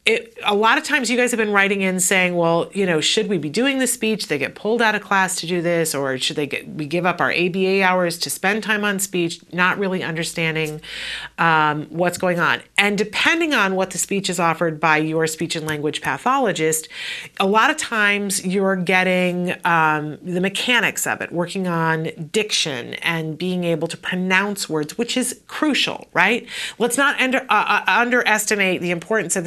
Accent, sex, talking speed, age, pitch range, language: American, female, 200 wpm, 40-59, 175-220 Hz, English